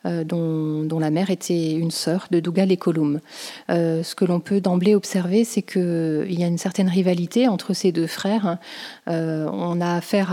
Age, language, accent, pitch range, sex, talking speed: 30-49, French, French, 170-200 Hz, female, 190 wpm